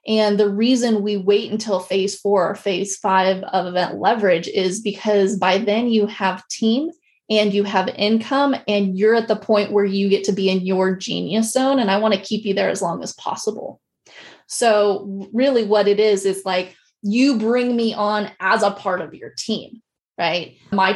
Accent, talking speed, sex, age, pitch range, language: American, 200 wpm, female, 20-39, 195-230 Hz, English